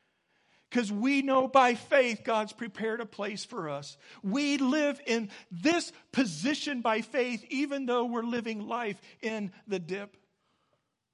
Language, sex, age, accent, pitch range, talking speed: English, male, 50-69, American, 140-200 Hz, 140 wpm